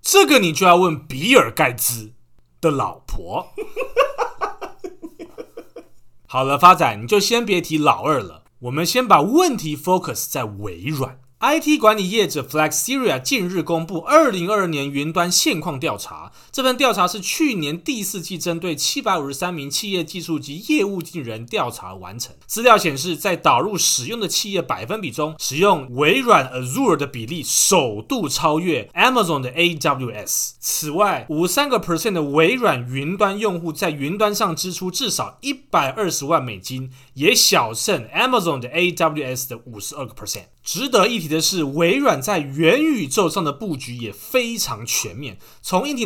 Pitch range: 145-210 Hz